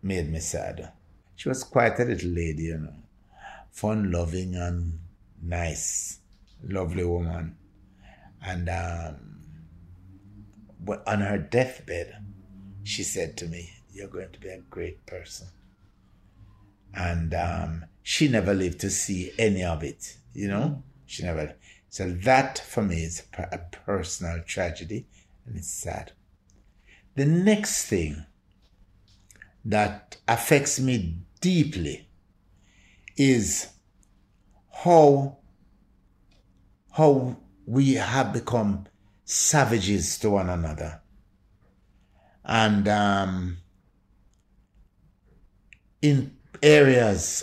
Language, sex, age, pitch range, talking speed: English, male, 60-79, 90-105 Hz, 100 wpm